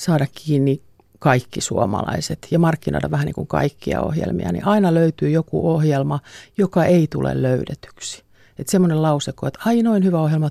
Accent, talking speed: native, 160 wpm